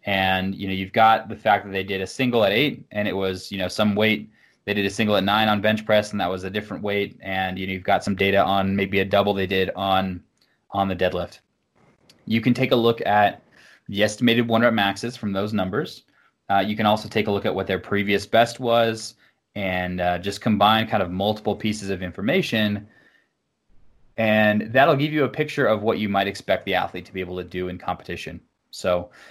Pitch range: 95-110 Hz